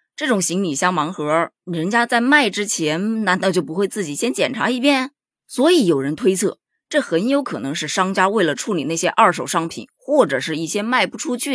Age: 20-39